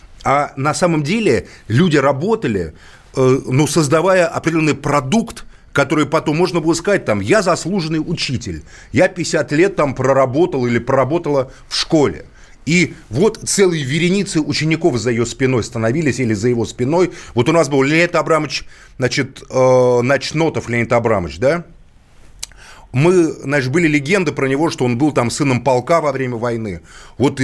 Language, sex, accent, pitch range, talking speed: Russian, male, native, 125-170 Hz, 150 wpm